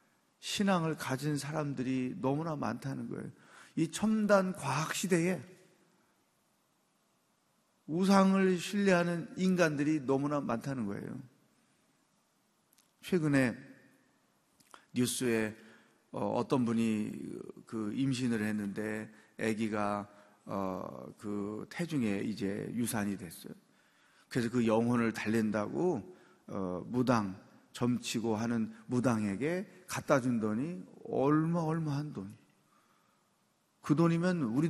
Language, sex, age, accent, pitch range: Korean, male, 30-49, native, 110-155 Hz